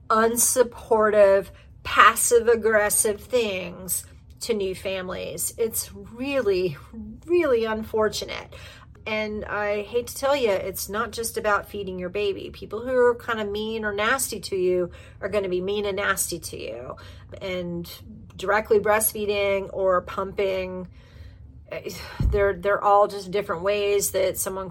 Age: 40-59